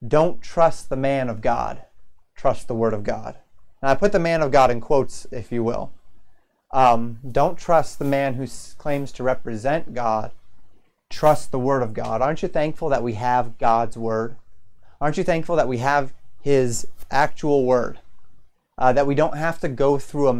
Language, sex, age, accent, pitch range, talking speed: English, male, 30-49, American, 120-150 Hz, 190 wpm